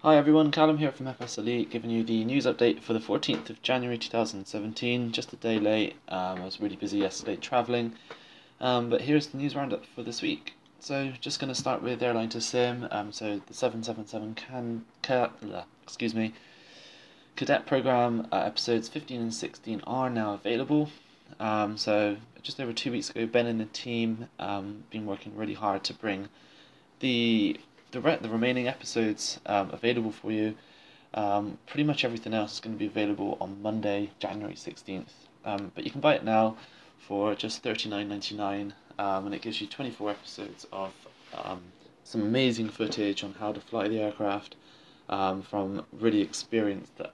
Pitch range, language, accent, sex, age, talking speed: 105-125 Hz, English, British, male, 20-39, 170 wpm